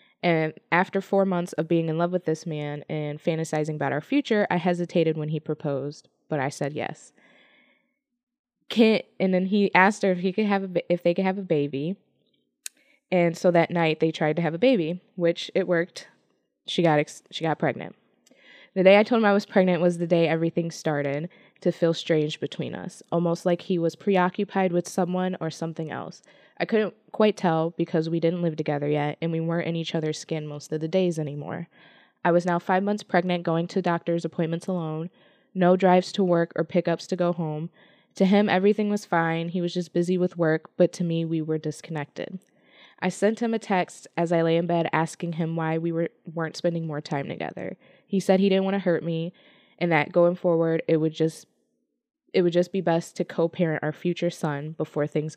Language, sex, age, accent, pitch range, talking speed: English, female, 20-39, American, 160-190 Hz, 210 wpm